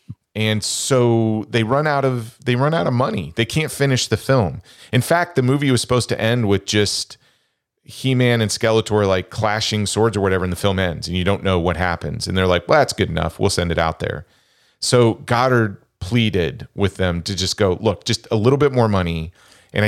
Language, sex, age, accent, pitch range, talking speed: English, male, 40-59, American, 90-115 Hz, 215 wpm